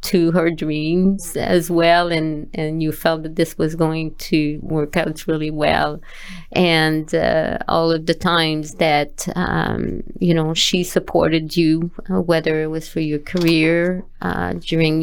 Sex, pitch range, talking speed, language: female, 165-190 Hz, 160 wpm, English